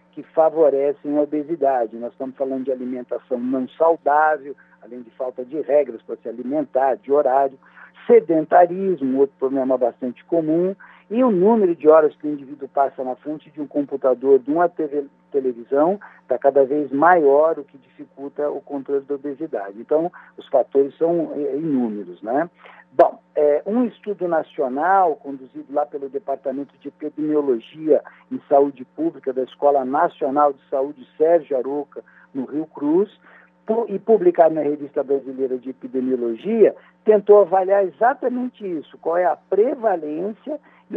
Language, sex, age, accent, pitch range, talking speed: Portuguese, male, 60-79, Brazilian, 140-195 Hz, 150 wpm